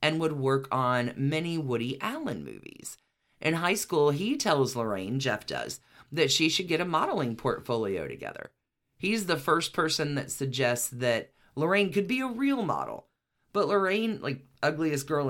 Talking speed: 165 wpm